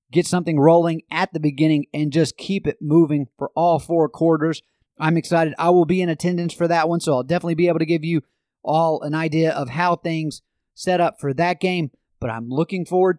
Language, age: English, 30-49